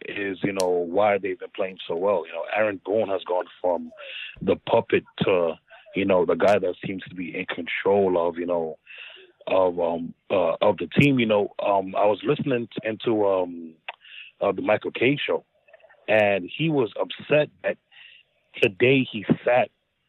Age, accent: 30-49, American